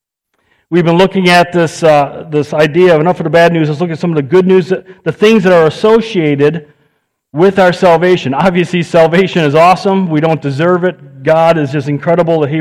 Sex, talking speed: male, 215 wpm